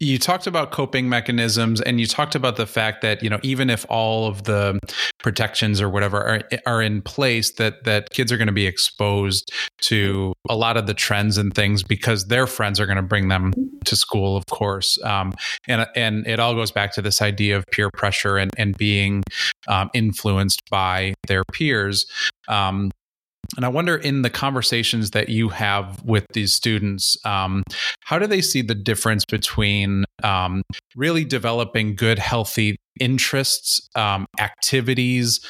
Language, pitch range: English, 100-120 Hz